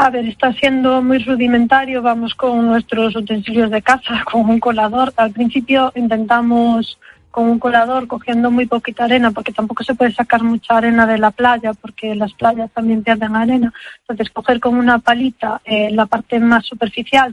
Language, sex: Spanish, female